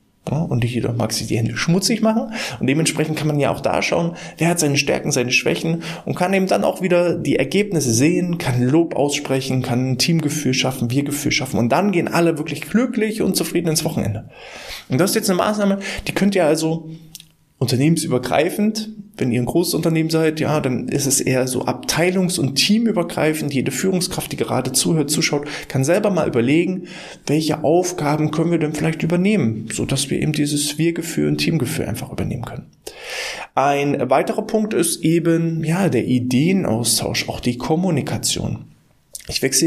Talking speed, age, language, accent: 175 wpm, 20-39, German, German